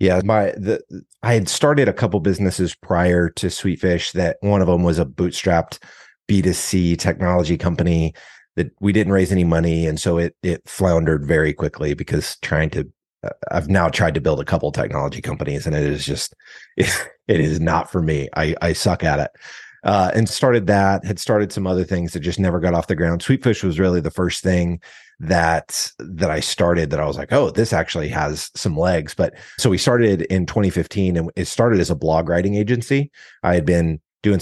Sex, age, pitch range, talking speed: male, 30-49, 80-100 Hz, 200 wpm